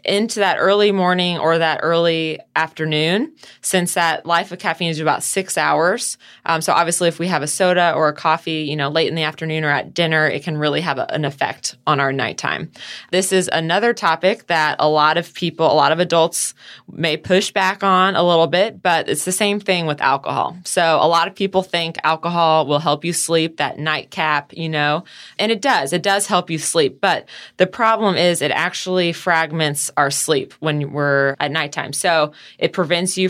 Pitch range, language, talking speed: 155-180 Hz, English, 205 wpm